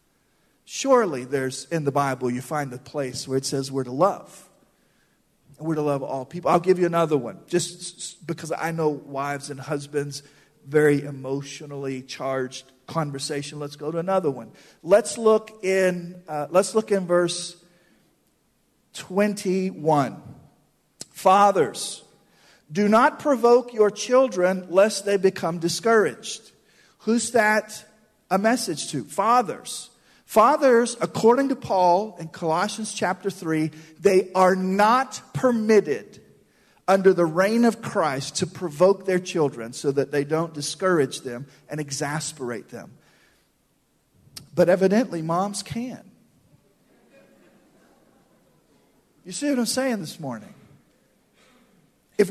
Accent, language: American, English